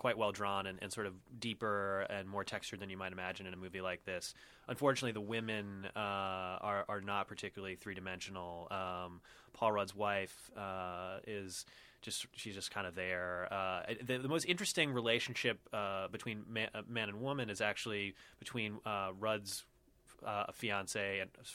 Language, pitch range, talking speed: English, 95-110 Hz, 180 wpm